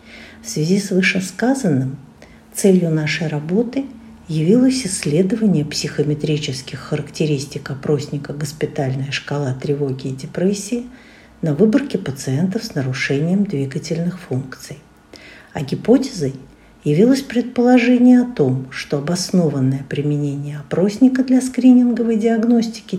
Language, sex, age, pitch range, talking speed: Russian, female, 50-69, 145-200 Hz, 95 wpm